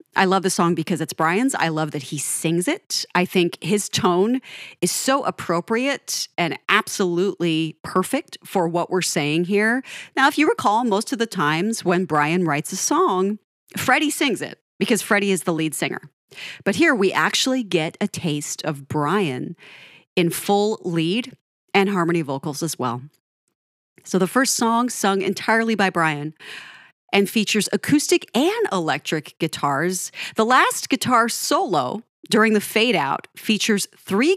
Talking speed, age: 155 wpm, 40-59